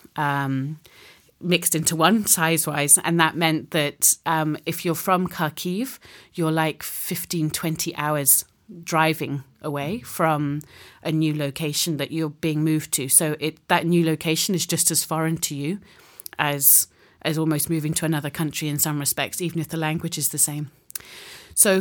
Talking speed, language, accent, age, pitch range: 160 wpm, English, British, 30-49, 150-170 Hz